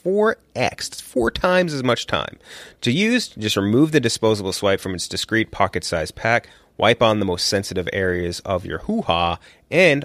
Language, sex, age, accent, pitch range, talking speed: English, male, 30-49, American, 95-120 Hz, 180 wpm